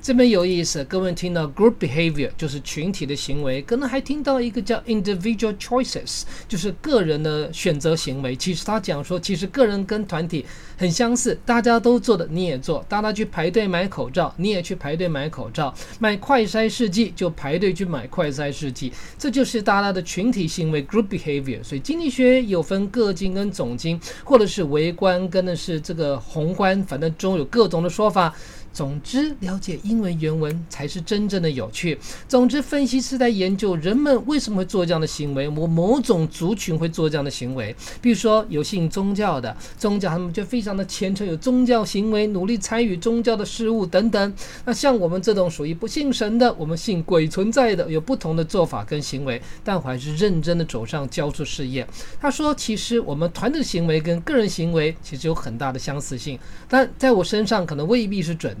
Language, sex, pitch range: English, male, 155-225 Hz